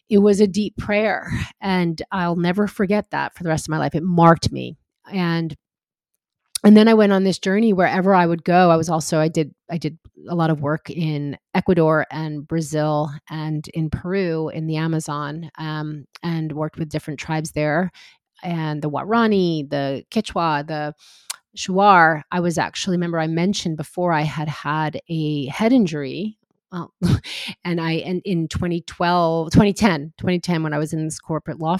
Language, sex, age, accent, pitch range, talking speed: English, female, 30-49, American, 155-185 Hz, 175 wpm